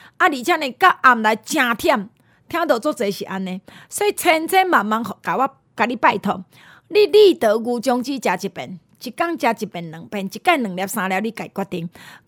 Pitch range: 225-350 Hz